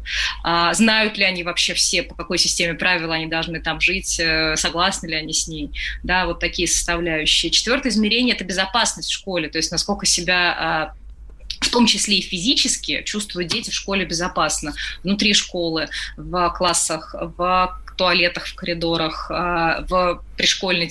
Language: Russian